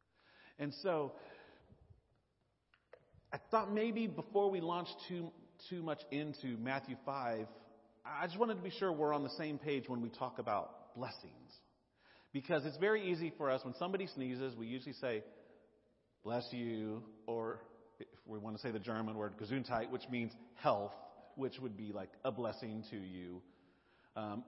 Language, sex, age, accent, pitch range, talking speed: English, male, 40-59, American, 105-160 Hz, 160 wpm